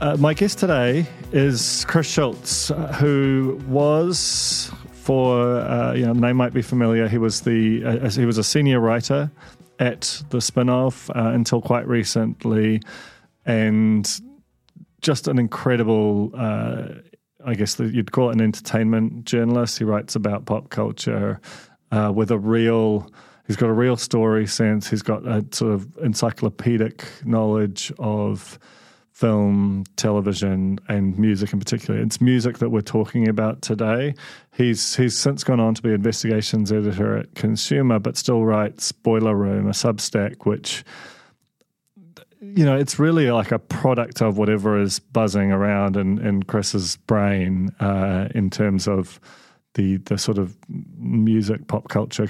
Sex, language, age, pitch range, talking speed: male, English, 30-49, 105-125 Hz, 150 wpm